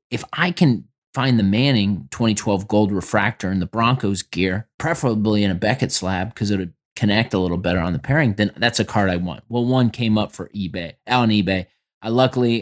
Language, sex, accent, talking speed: English, male, American, 210 wpm